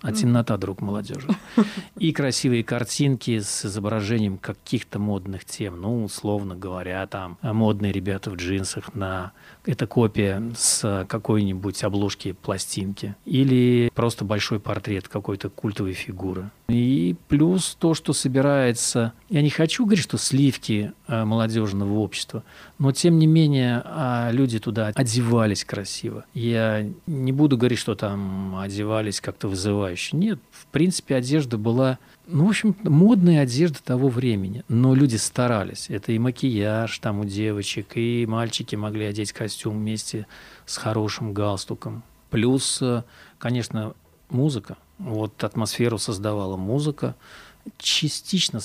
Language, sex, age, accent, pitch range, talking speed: Russian, male, 40-59, native, 105-130 Hz, 125 wpm